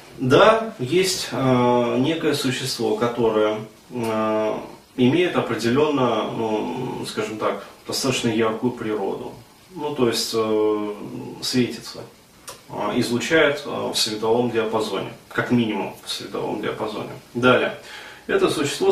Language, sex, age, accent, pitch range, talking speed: Russian, male, 30-49, native, 110-130 Hz, 110 wpm